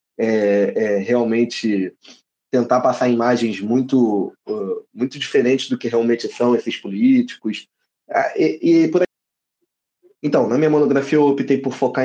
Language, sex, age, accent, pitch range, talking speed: Portuguese, male, 20-39, Brazilian, 125-165 Hz, 145 wpm